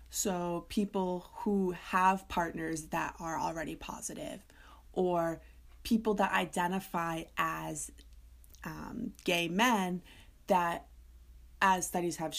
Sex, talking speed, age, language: female, 100 wpm, 20-39, English